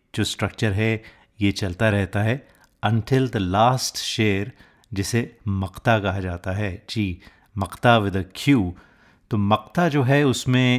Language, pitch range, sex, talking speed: Hindi, 95-120 Hz, male, 140 wpm